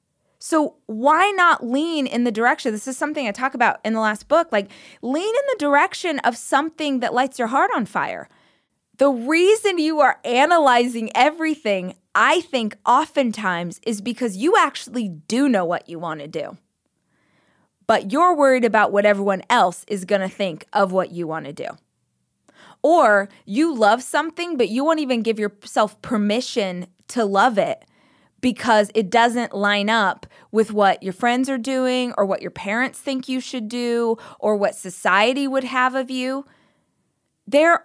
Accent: American